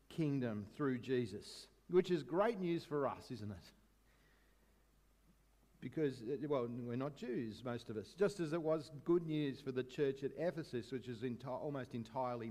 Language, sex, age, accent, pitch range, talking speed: English, male, 50-69, Australian, 130-190 Hz, 165 wpm